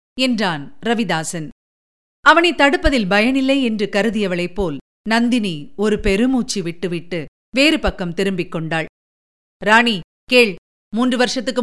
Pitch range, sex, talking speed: 210-240 Hz, female, 95 wpm